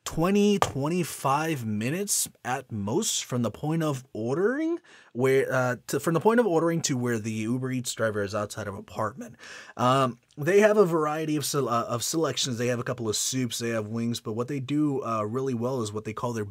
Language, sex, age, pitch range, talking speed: English, male, 30-49, 120-165 Hz, 210 wpm